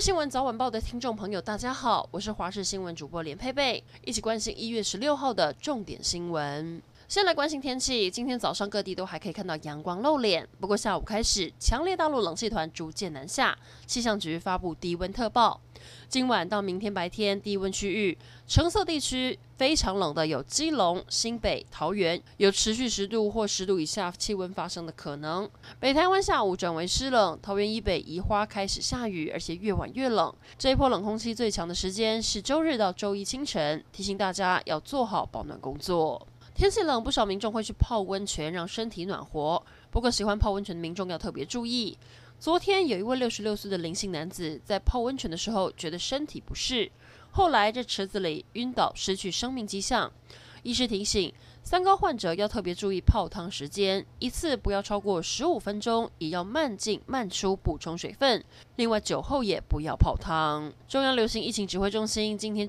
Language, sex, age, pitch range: Chinese, female, 20-39, 180-245 Hz